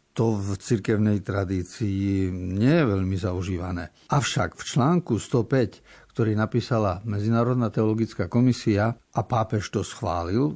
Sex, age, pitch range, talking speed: male, 60-79, 110-135 Hz, 120 wpm